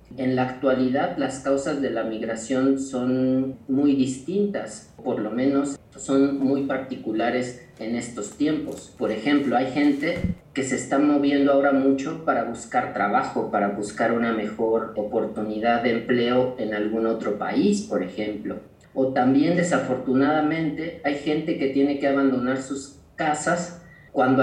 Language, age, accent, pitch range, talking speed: Spanish, 40-59, Mexican, 125-150 Hz, 140 wpm